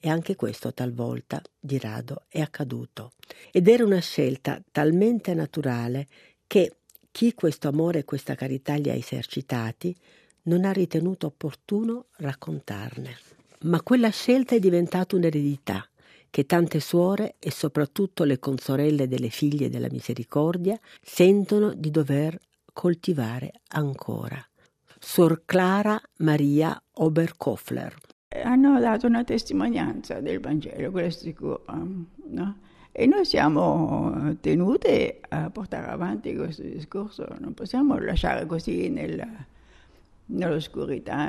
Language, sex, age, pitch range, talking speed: Italian, female, 50-69, 140-205 Hz, 115 wpm